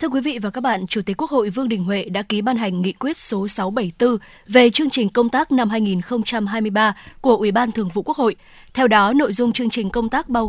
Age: 20-39